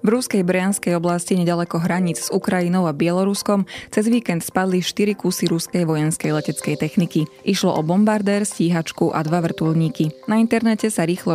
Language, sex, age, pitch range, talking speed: Slovak, female, 20-39, 165-195 Hz, 160 wpm